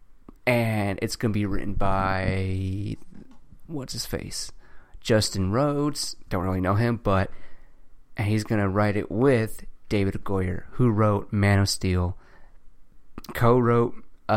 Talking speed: 130 wpm